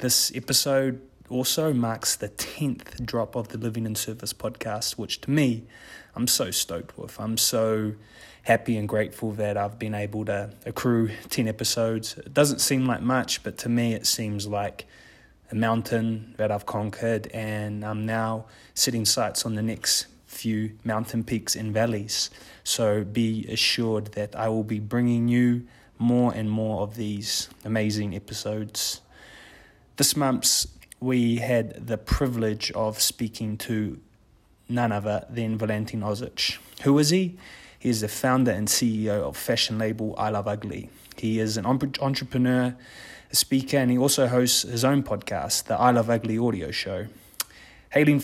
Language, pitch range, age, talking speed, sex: English, 105-120 Hz, 20-39, 160 wpm, male